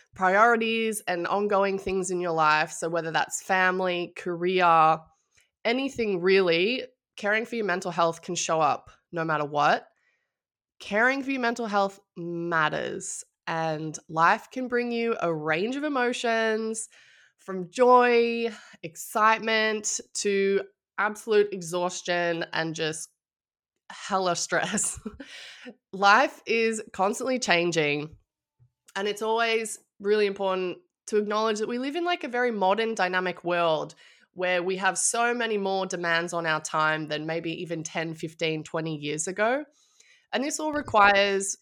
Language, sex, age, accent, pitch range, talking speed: English, female, 20-39, Australian, 170-225 Hz, 135 wpm